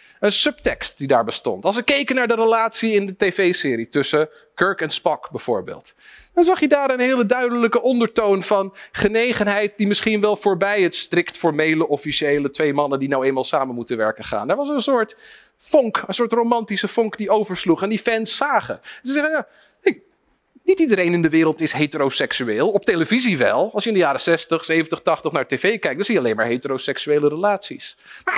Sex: male